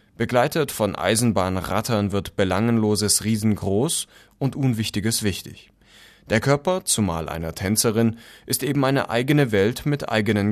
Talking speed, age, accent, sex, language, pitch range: 120 wpm, 30-49, German, male, German, 100-125 Hz